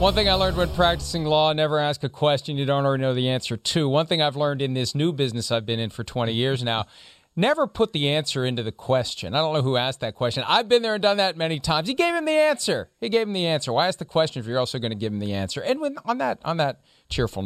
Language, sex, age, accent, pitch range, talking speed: English, male, 40-59, American, 130-195 Hz, 285 wpm